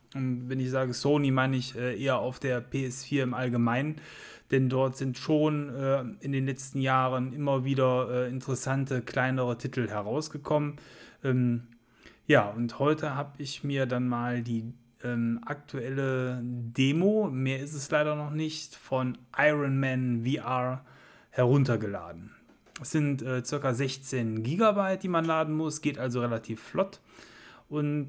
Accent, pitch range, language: German, 125-145 Hz, German